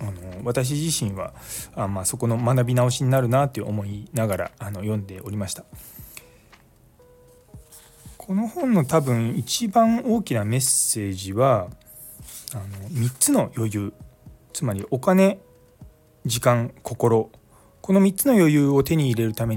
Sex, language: male, Japanese